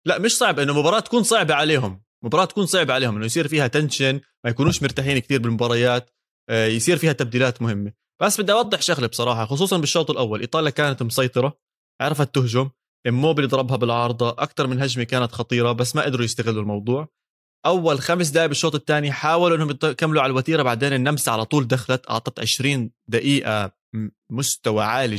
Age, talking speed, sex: 20-39, 170 wpm, male